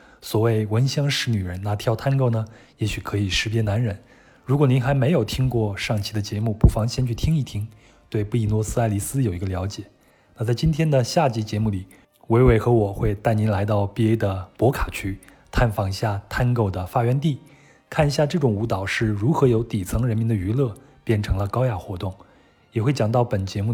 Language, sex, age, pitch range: Chinese, male, 20-39, 100-125 Hz